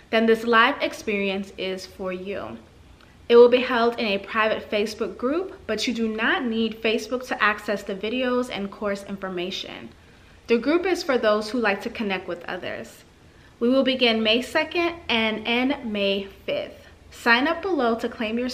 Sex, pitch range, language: female, 210-250 Hz, English